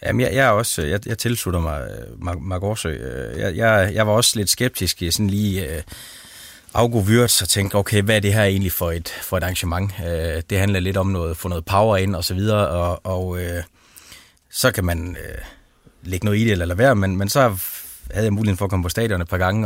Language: Danish